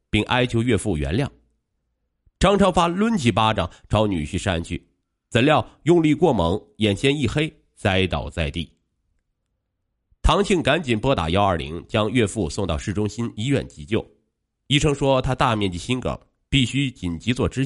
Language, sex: Chinese, male